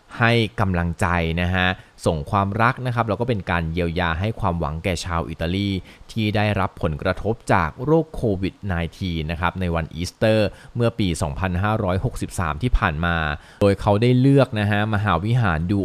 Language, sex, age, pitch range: Thai, male, 20-39, 90-110 Hz